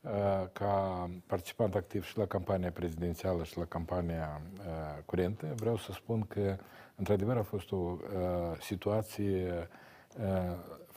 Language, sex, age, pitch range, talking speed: Romanian, male, 50-69, 90-115 Hz, 125 wpm